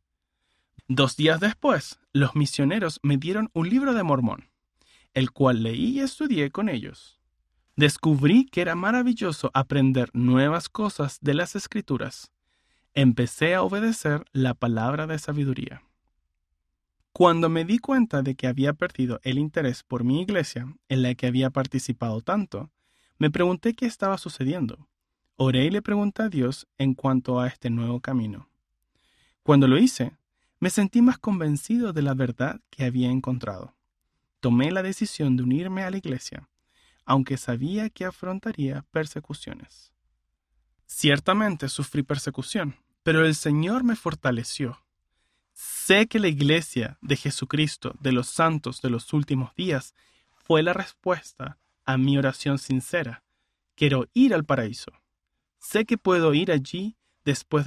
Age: 30-49